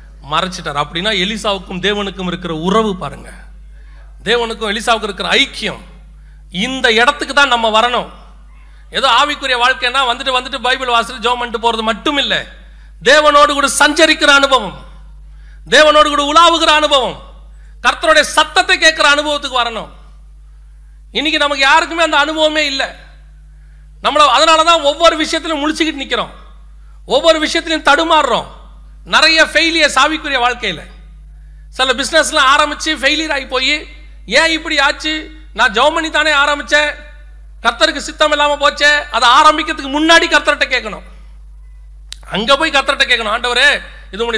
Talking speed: 110 wpm